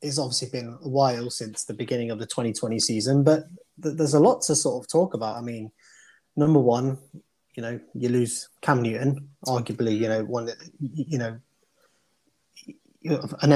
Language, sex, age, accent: English, male, 20-39, British